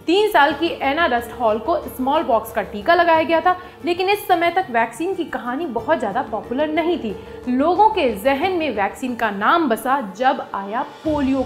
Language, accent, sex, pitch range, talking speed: Hindi, native, female, 230-330 Hz, 195 wpm